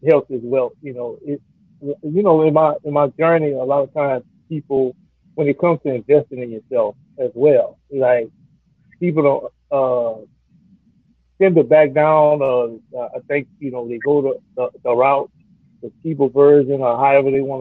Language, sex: English, male